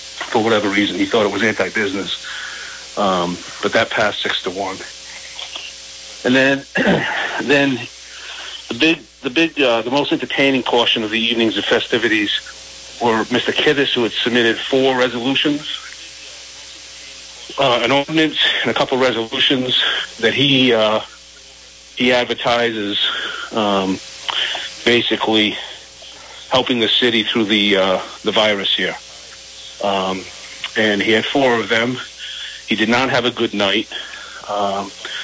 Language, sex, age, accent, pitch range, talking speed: English, male, 40-59, American, 100-125 Hz, 135 wpm